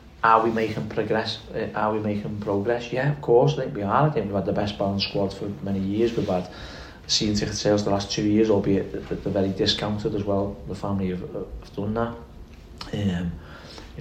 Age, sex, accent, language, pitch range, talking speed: 40-59, male, British, English, 100-115 Hz, 210 wpm